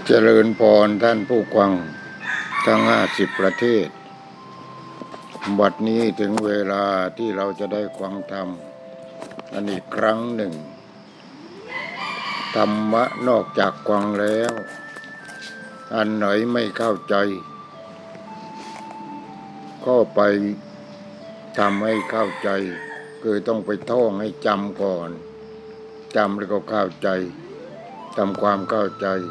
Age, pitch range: 60-79, 100-115 Hz